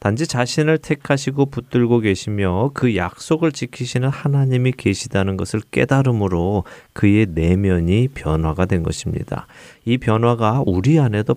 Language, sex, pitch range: Korean, male, 95-130 Hz